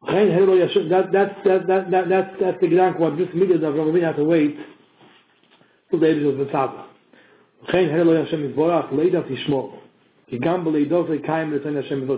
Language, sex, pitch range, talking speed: English, male, 150-190 Hz, 65 wpm